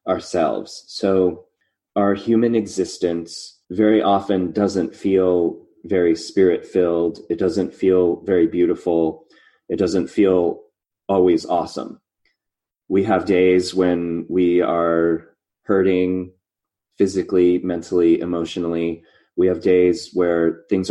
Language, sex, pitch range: English, male, 85-100 Hz